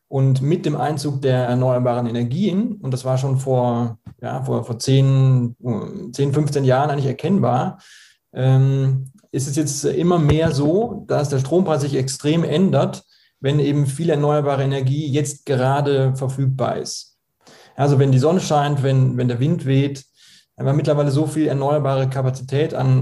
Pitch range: 130-150 Hz